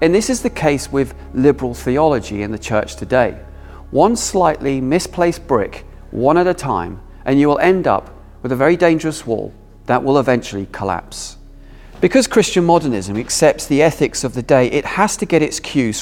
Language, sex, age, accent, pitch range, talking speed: English, male, 40-59, British, 105-150 Hz, 185 wpm